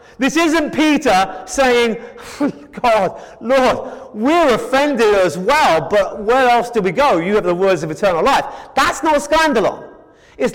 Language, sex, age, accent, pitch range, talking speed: English, male, 30-49, British, 210-295 Hz, 155 wpm